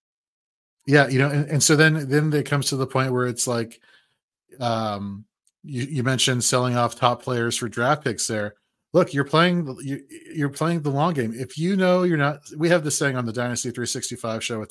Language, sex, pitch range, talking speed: English, male, 120-150 Hz, 220 wpm